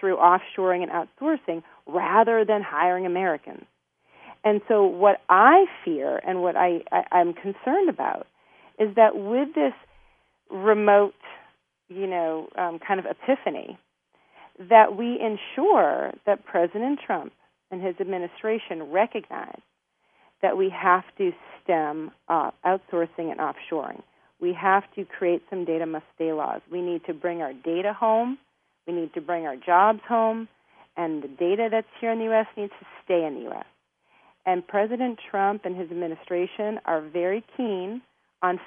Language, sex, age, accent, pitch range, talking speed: English, female, 40-59, American, 175-225 Hz, 145 wpm